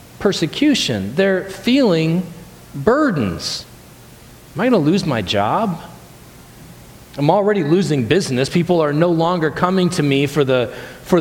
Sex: male